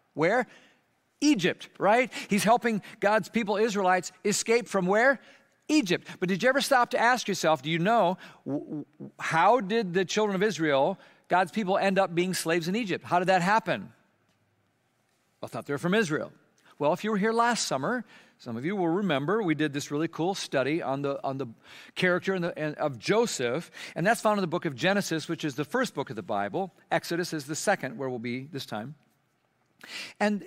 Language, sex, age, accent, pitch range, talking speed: English, male, 50-69, American, 165-225 Hz, 190 wpm